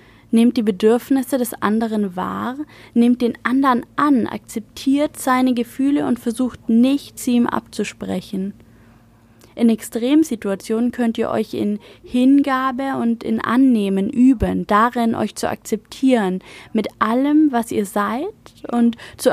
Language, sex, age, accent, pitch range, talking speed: German, female, 20-39, German, 220-265 Hz, 125 wpm